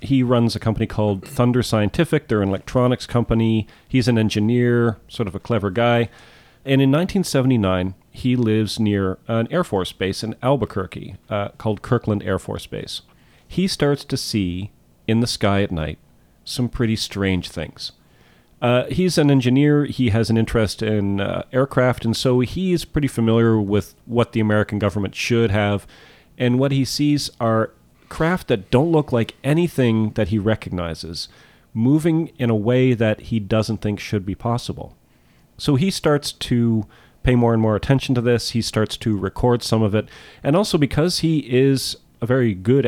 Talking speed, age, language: 175 wpm, 40-59, English